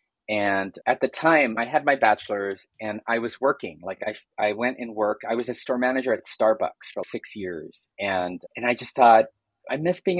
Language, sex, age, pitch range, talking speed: English, male, 30-49, 105-140 Hz, 220 wpm